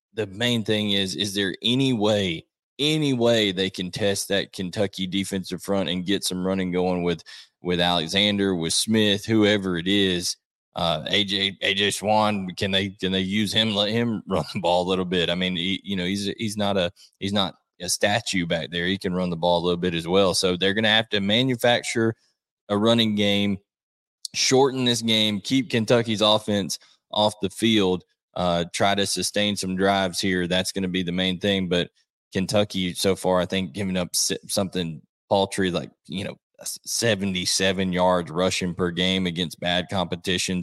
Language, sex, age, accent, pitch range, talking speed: English, male, 20-39, American, 90-105 Hz, 190 wpm